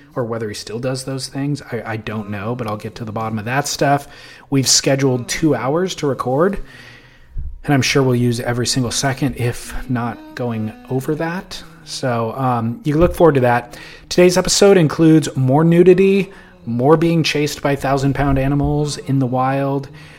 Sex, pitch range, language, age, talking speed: male, 115-145 Hz, English, 30-49, 180 wpm